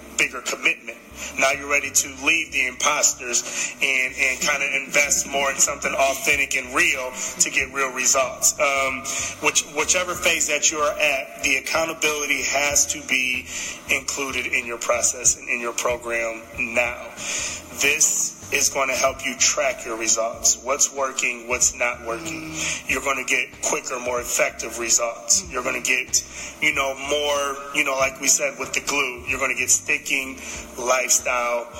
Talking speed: 170 wpm